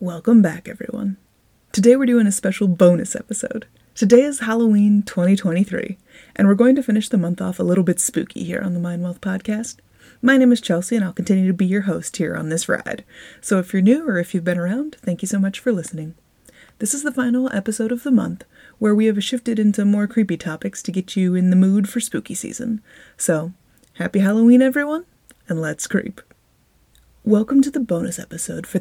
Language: English